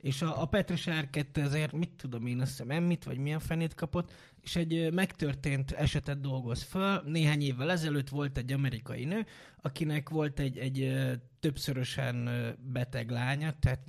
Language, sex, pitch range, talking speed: Hungarian, male, 130-170 Hz, 155 wpm